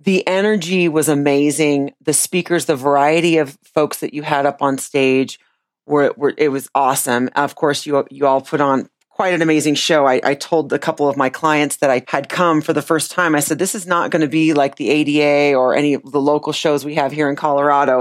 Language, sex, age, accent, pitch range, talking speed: English, female, 40-59, American, 140-175 Hz, 235 wpm